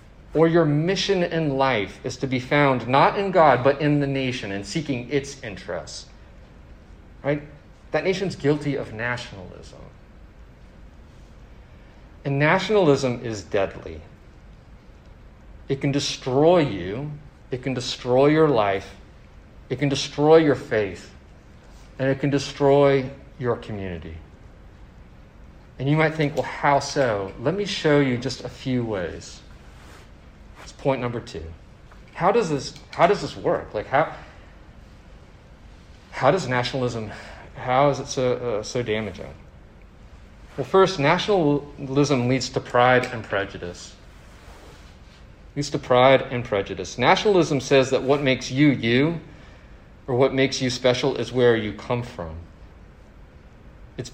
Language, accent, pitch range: English, American, 100-140 Hz